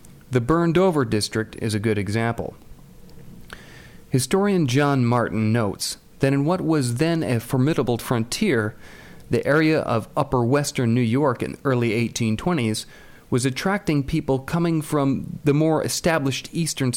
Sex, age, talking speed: male, 40-59, 140 wpm